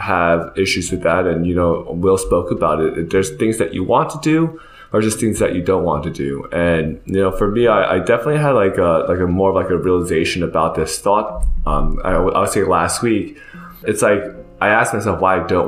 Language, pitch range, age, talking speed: English, 85-100 Hz, 20-39, 235 wpm